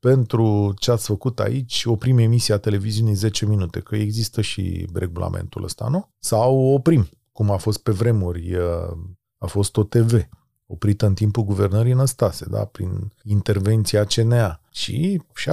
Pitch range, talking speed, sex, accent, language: 105-145 Hz, 145 wpm, male, native, Romanian